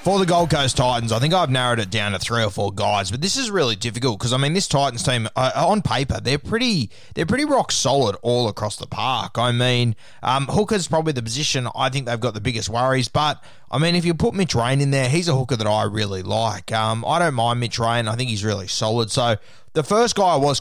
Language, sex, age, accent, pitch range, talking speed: English, male, 20-39, Australian, 110-140 Hz, 255 wpm